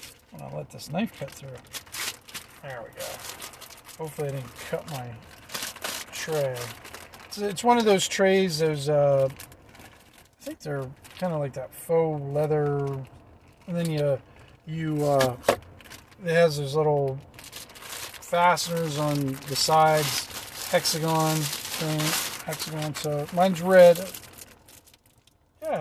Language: English